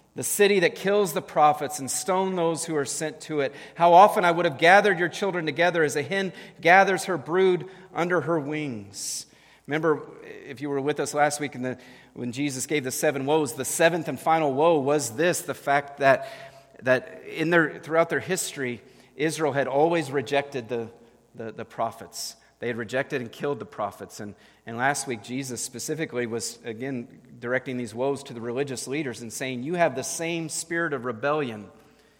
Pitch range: 125-160 Hz